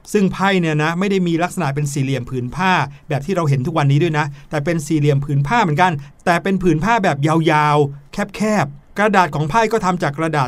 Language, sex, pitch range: Thai, male, 145-185 Hz